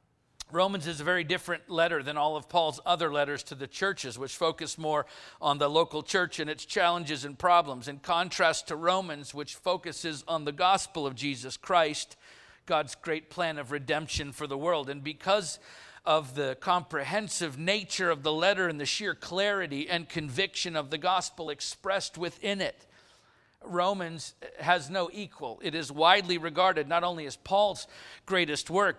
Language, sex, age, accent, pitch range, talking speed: English, male, 50-69, American, 150-185 Hz, 170 wpm